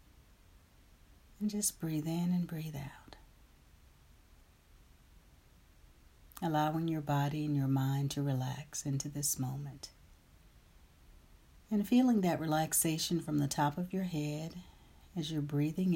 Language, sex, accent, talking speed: English, female, American, 115 wpm